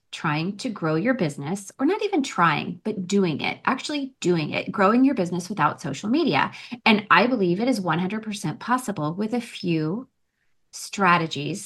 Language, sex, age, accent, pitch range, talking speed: English, female, 30-49, American, 170-255 Hz, 165 wpm